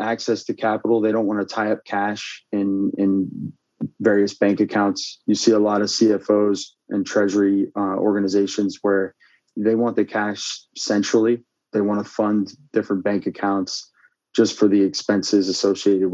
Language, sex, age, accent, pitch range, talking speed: English, male, 20-39, American, 95-105 Hz, 160 wpm